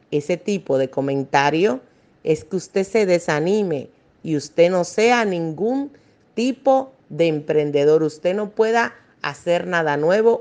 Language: Spanish